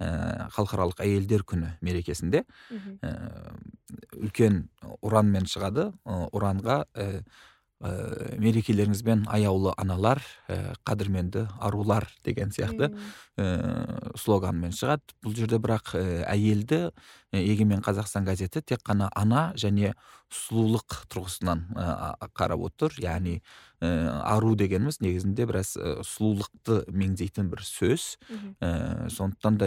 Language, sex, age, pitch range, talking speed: Russian, male, 40-59, 95-115 Hz, 85 wpm